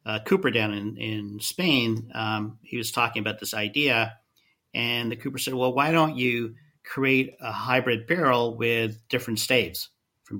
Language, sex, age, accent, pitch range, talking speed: English, male, 50-69, American, 110-125 Hz, 165 wpm